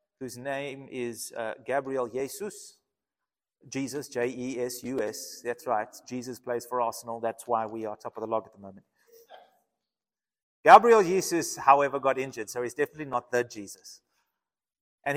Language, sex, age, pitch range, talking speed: English, male, 30-49, 130-185 Hz, 145 wpm